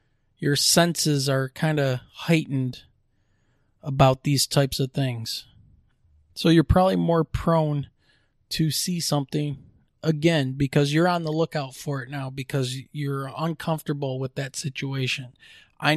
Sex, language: male, English